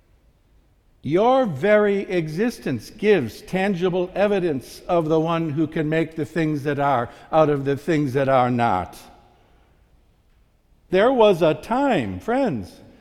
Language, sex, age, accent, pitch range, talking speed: English, male, 60-79, American, 100-145 Hz, 130 wpm